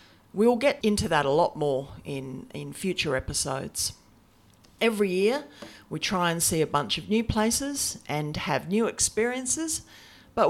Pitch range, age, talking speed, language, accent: 140-210 Hz, 40-59, 155 wpm, English, Australian